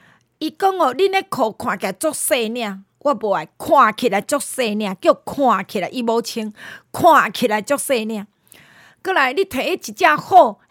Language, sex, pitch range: Chinese, female, 205-300 Hz